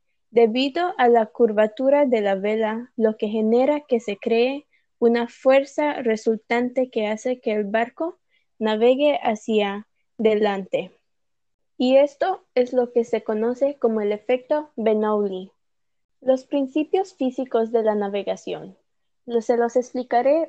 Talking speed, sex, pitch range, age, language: 130 wpm, female, 220-270 Hz, 20-39, Spanish